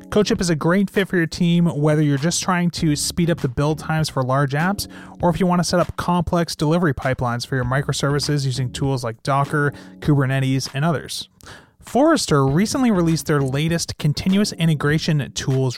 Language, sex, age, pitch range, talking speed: English, male, 30-49, 135-170 Hz, 185 wpm